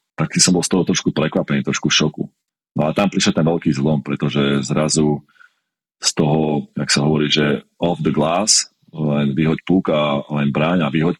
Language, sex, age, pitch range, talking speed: Slovak, male, 30-49, 75-85 Hz, 180 wpm